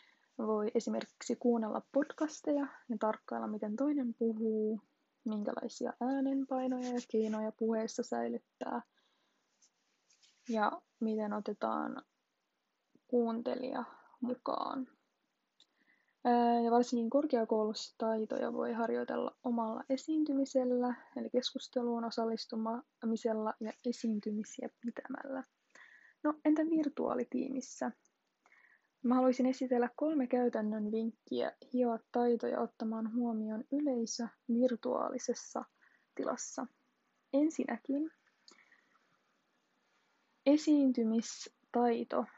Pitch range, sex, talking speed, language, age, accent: 225-260 Hz, female, 70 wpm, Finnish, 20-39, native